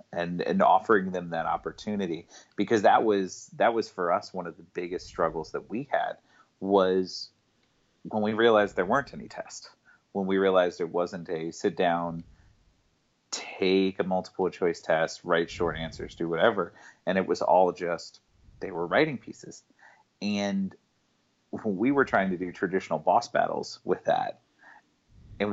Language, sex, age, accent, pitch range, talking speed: English, male, 40-59, American, 90-110 Hz, 160 wpm